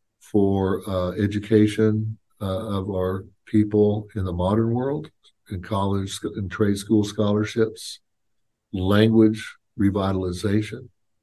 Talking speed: 100 wpm